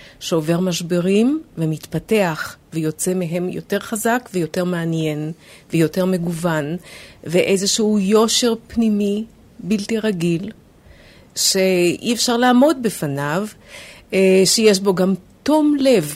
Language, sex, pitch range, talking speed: Hebrew, female, 170-210 Hz, 95 wpm